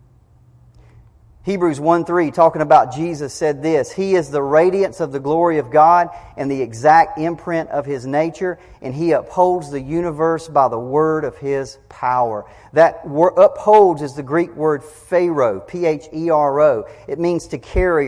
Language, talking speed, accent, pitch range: English, 155 wpm, American, 130-165 Hz